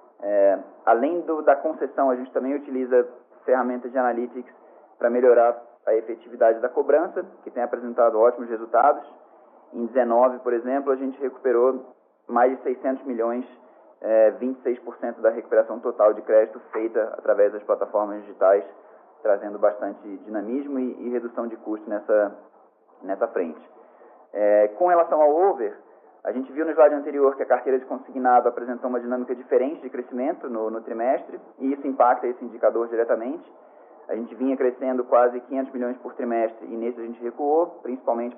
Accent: Brazilian